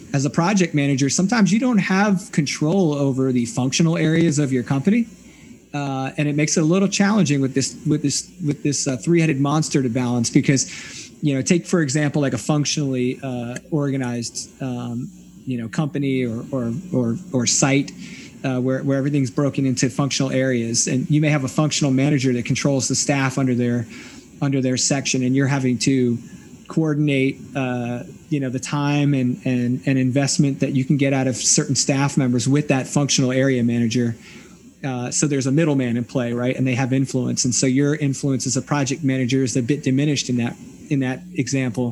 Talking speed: 195 wpm